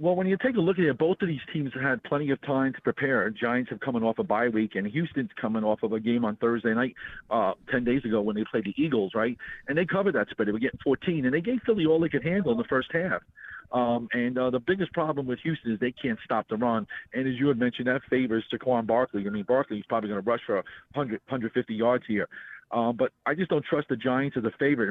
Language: English